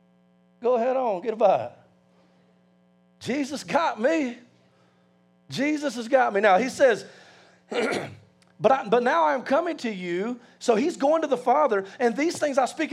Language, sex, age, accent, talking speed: English, male, 40-59, American, 165 wpm